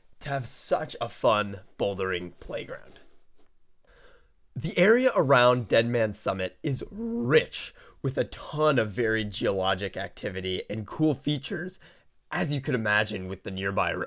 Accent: American